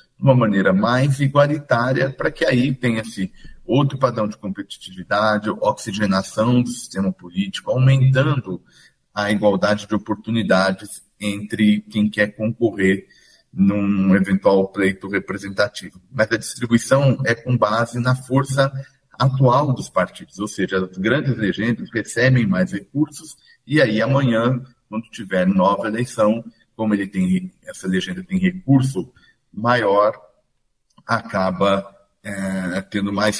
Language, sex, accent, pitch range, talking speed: Portuguese, male, Brazilian, 95-125 Hz, 125 wpm